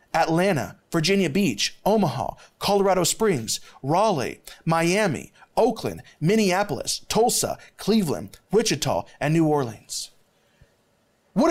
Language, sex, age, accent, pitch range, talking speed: English, male, 30-49, American, 195-305 Hz, 90 wpm